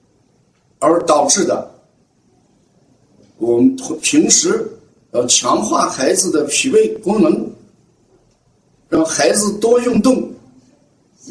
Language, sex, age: Chinese, male, 50-69